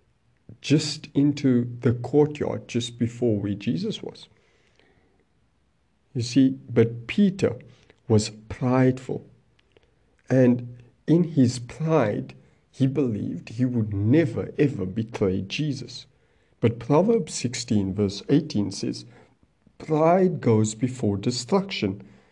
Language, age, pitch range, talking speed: English, 50-69, 105-130 Hz, 100 wpm